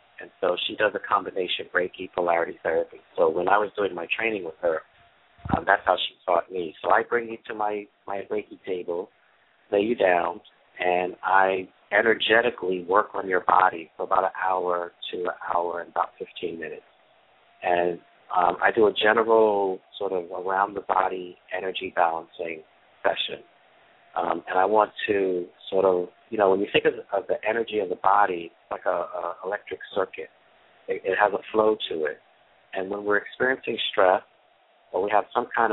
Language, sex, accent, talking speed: English, male, American, 180 wpm